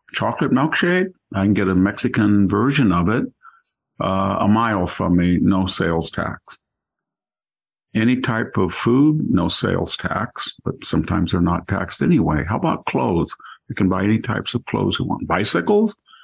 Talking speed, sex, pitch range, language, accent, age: 165 wpm, male, 95-110 Hz, English, American, 50-69